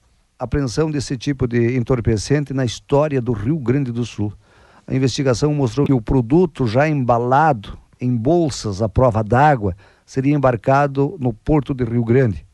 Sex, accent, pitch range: male, Brazilian, 115-150 Hz